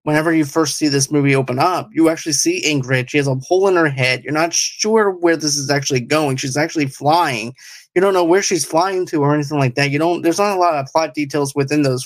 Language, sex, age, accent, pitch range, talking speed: English, male, 20-39, American, 140-165 Hz, 260 wpm